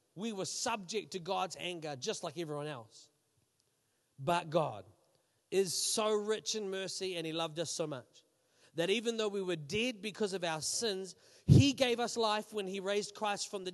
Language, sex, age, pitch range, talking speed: English, male, 30-49, 165-235 Hz, 190 wpm